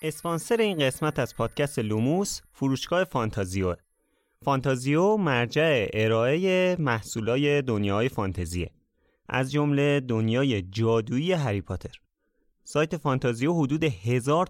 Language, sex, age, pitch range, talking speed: Persian, male, 30-49, 105-145 Hz, 100 wpm